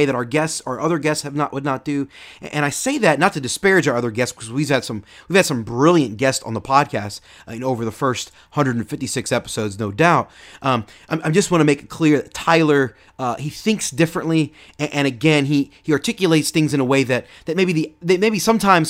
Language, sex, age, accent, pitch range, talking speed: English, male, 30-49, American, 125-160 Hz, 240 wpm